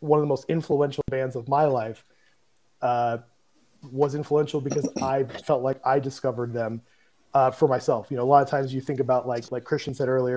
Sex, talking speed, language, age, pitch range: male, 210 wpm, English, 30-49, 125-145 Hz